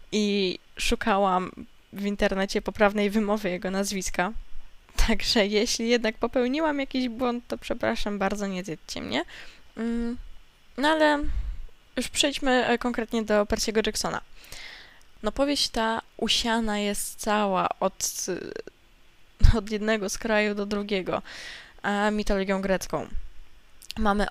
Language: Polish